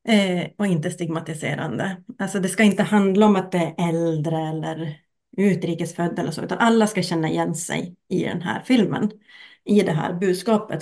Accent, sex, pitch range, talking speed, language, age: native, female, 175-205 Hz, 175 wpm, Swedish, 30-49